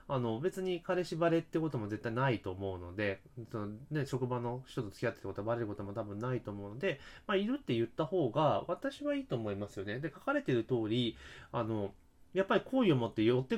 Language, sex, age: Japanese, male, 30-49